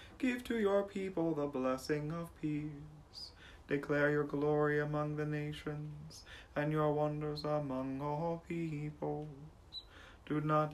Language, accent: English, American